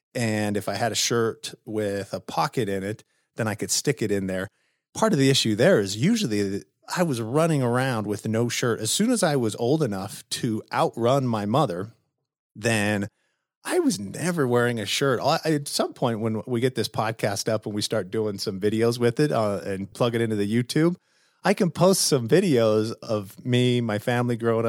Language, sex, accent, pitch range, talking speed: English, male, American, 105-145 Hz, 205 wpm